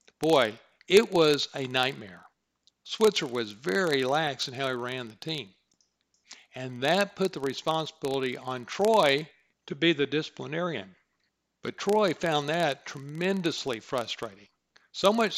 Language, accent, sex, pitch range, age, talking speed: English, American, male, 125-165 Hz, 60-79, 135 wpm